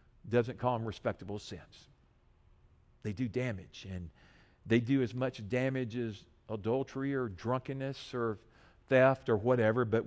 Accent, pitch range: American, 125-180 Hz